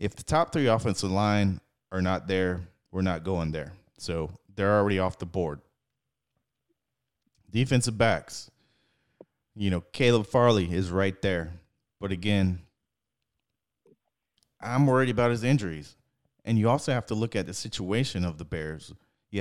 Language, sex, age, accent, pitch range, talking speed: English, male, 30-49, American, 90-115 Hz, 150 wpm